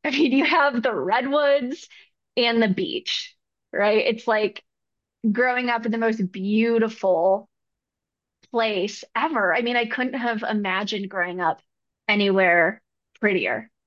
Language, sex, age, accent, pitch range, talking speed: English, female, 20-39, American, 210-285 Hz, 130 wpm